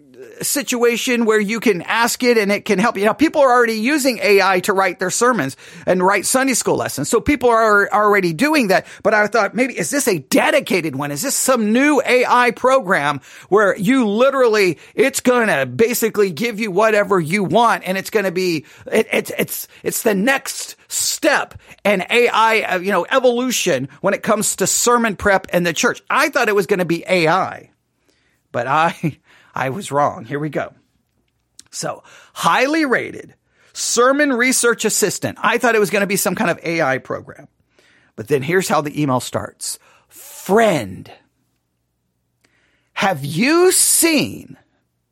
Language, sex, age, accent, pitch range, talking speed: English, male, 40-59, American, 185-250 Hz, 175 wpm